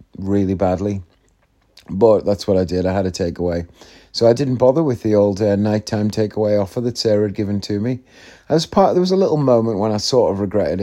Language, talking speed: English, 220 wpm